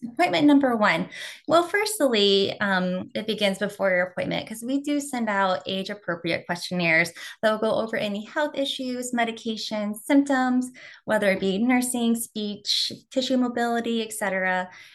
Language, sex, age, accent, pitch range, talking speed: English, female, 20-39, American, 180-230 Hz, 140 wpm